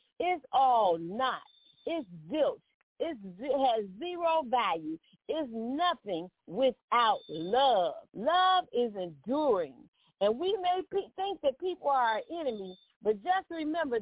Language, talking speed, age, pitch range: English, 125 wpm, 40-59, 230-330 Hz